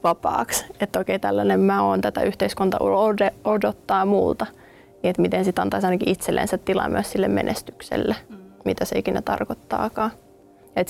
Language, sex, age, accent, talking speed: Finnish, female, 20-39, native, 125 wpm